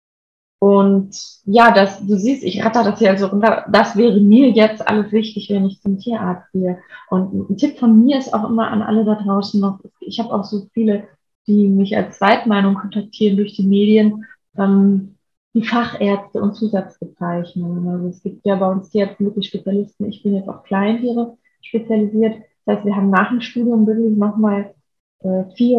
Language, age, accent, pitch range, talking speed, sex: German, 20-39, German, 195-225 Hz, 185 wpm, female